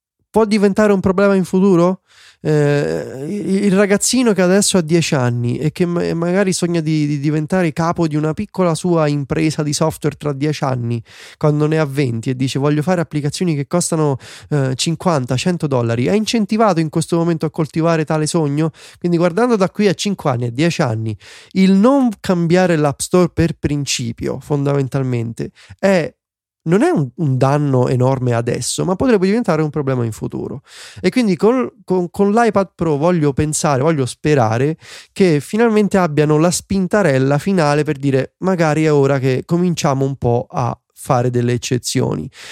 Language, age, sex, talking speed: Italian, 20-39, male, 165 wpm